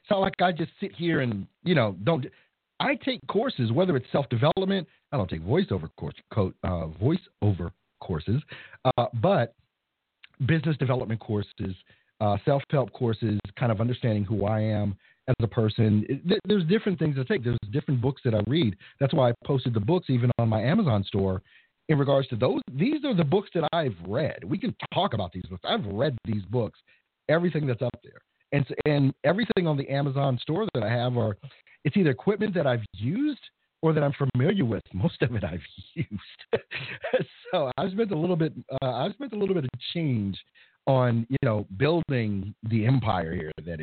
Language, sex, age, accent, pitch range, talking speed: English, male, 40-59, American, 110-165 Hz, 190 wpm